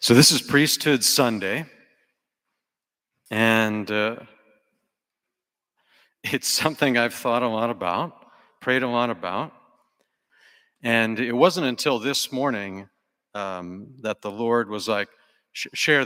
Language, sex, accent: English, male, American